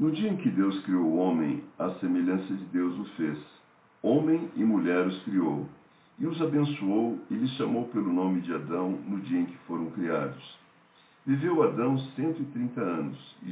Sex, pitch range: male, 90-130 Hz